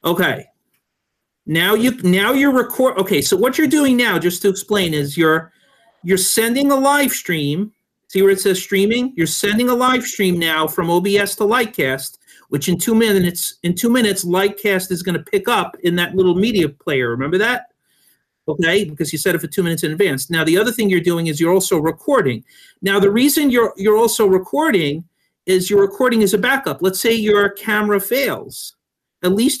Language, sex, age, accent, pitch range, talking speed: English, male, 50-69, American, 175-210 Hz, 195 wpm